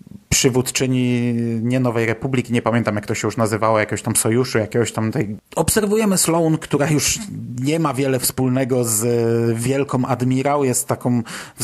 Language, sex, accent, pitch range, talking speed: Polish, male, native, 120-140 Hz, 160 wpm